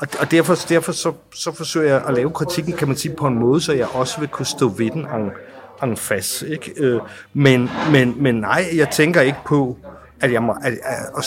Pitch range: 125-155 Hz